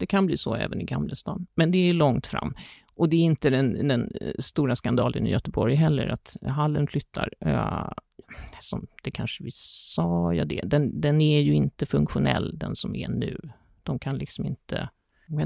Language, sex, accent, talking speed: Swedish, male, native, 200 wpm